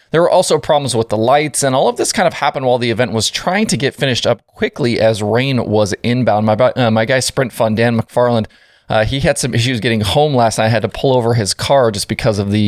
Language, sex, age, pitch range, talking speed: English, male, 30-49, 110-140 Hz, 265 wpm